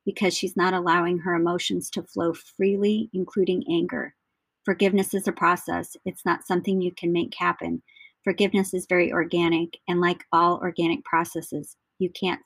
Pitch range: 170-190 Hz